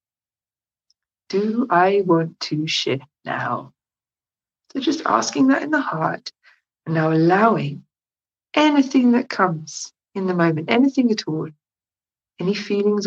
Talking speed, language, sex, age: 125 wpm, English, female, 60-79